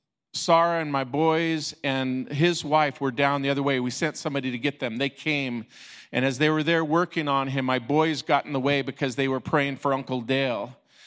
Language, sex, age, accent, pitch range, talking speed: English, male, 40-59, American, 130-170 Hz, 220 wpm